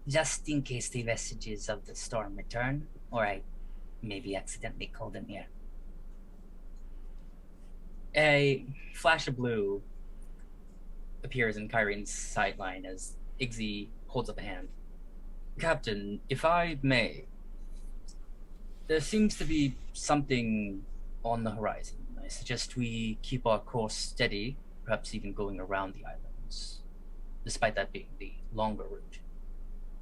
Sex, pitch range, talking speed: male, 105-135 Hz, 120 wpm